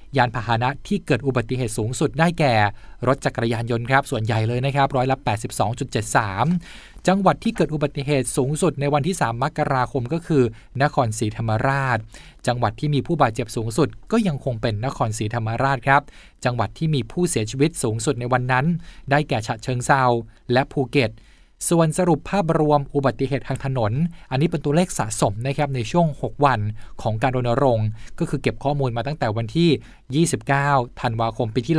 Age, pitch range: 20-39, 115-145 Hz